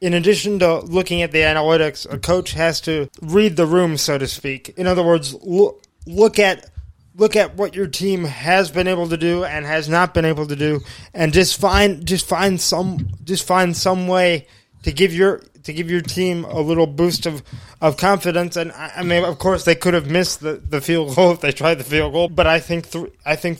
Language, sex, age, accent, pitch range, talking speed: English, male, 20-39, American, 155-185 Hz, 225 wpm